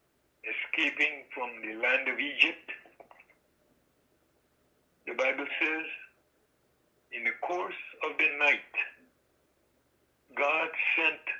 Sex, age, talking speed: male, 60-79, 90 wpm